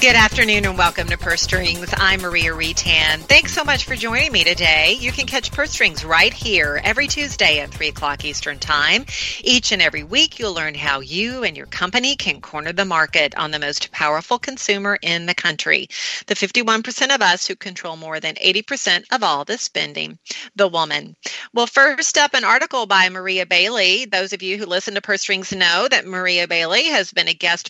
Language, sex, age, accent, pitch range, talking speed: English, female, 40-59, American, 170-210 Hz, 200 wpm